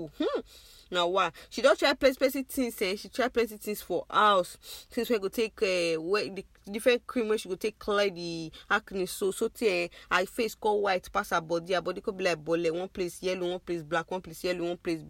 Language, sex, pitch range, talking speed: English, female, 185-225 Hz, 260 wpm